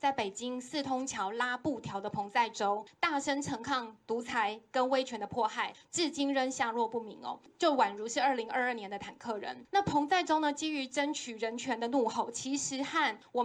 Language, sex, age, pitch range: Chinese, female, 20-39, 230-290 Hz